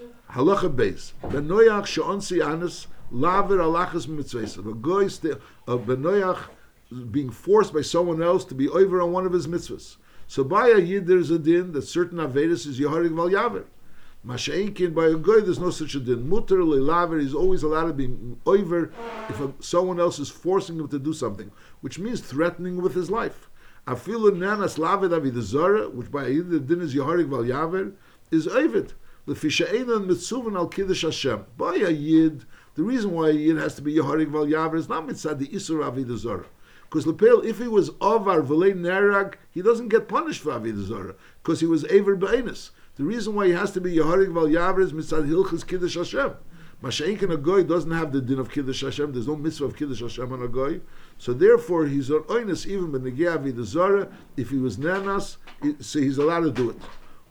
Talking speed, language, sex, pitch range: 175 wpm, English, male, 145-190 Hz